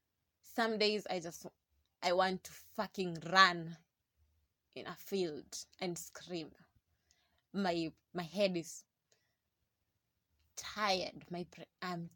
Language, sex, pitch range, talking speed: English, female, 155-195 Hz, 105 wpm